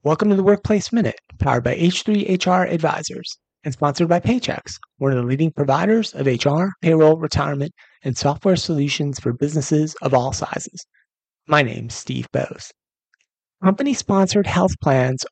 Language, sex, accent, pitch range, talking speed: English, male, American, 135-185 Hz, 145 wpm